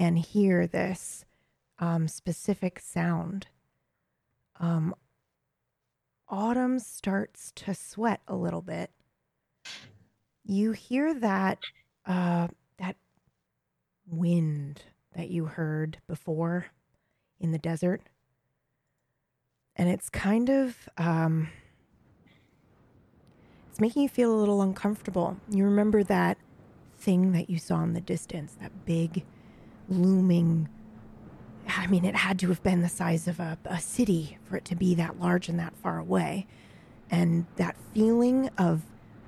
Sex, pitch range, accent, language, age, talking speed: female, 165-195 Hz, American, English, 30-49, 120 wpm